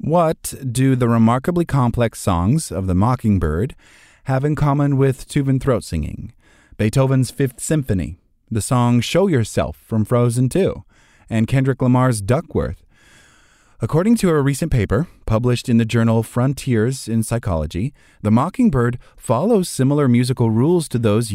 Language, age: English, 30-49